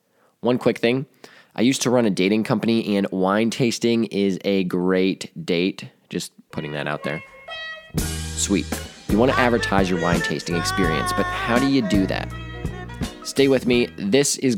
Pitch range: 95-120 Hz